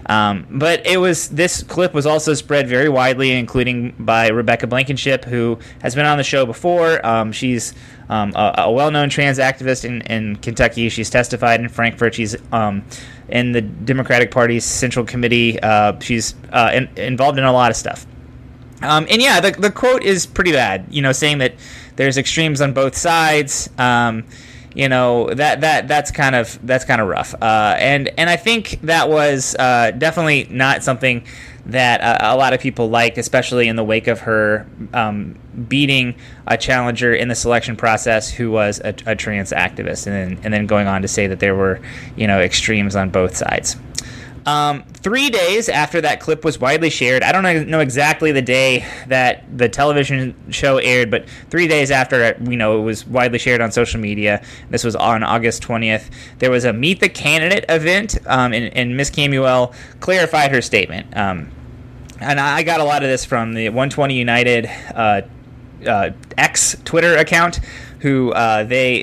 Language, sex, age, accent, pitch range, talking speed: English, male, 20-39, American, 115-140 Hz, 185 wpm